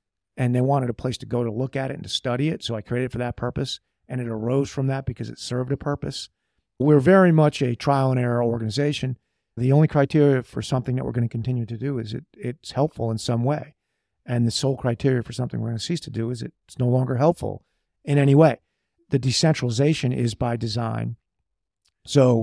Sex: male